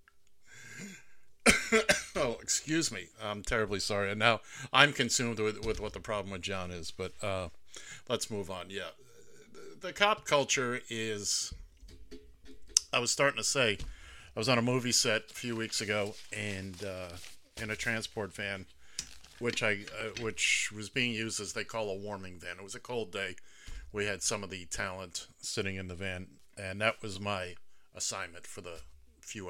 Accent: American